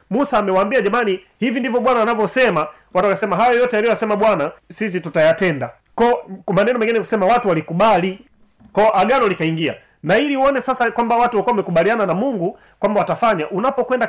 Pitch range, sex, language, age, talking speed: 175-235 Hz, male, Swahili, 30-49, 160 wpm